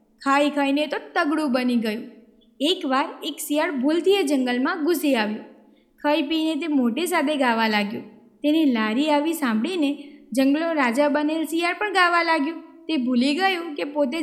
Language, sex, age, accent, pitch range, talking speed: Gujarati, female, 20-39, native, 255-330 Hz, 155 wpm